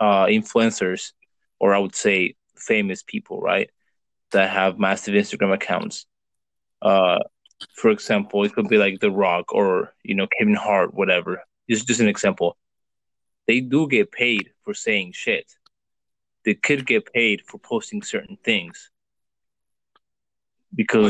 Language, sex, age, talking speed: English, male, 20-39, 140 wpm